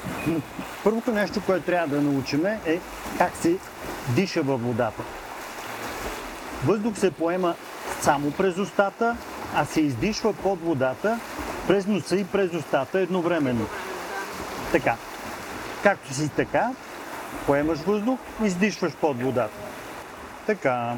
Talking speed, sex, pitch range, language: 115 wpm, male, 145-195 Hz, Bulgarian